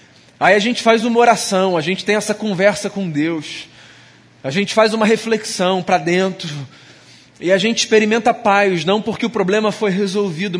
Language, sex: Portuguese, male